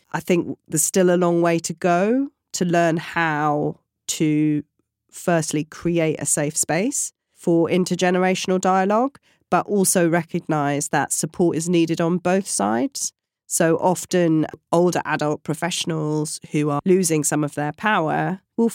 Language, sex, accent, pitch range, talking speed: English, female, British, 155-185 Hz, 140 wpm